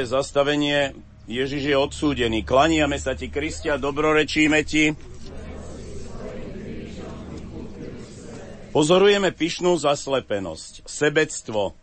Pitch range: 100-150 Hz